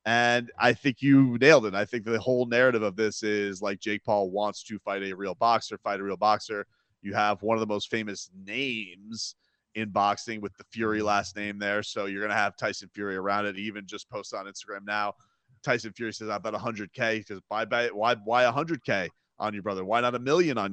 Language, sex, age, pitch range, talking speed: English, male, 30-49, 105-130 Hz, 235 wpm